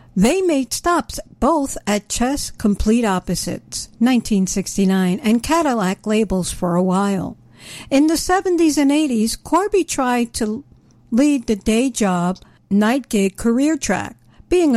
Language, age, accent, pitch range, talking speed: English, 60-79, American, 195-275 Hz, 130 wpm